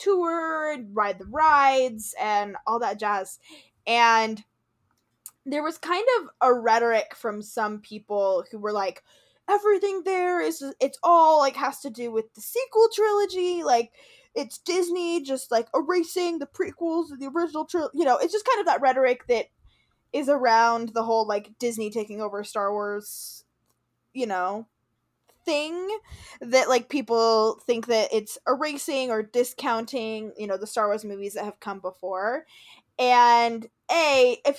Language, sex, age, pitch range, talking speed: English, female, 10-29, 220-315 Hz, 155 wpm